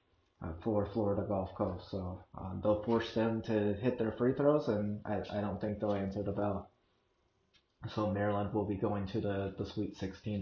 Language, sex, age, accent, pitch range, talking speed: English, male, 30-49, American, 100-115 Hz, 190 wpm